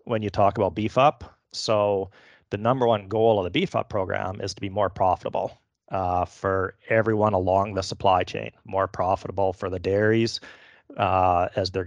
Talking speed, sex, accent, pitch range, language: 180 wpm, male, American, 95-110 Hz, English